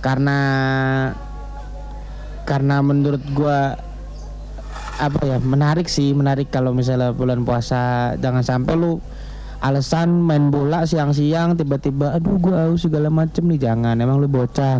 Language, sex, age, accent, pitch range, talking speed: Indonesian, male, 20-39, native, 130-160 Hz, 125 wpm